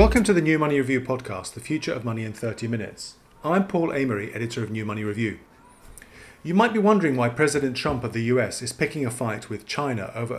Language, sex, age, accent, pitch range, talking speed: English, male, 40-59, British, 115-150 Hz, 225 wpm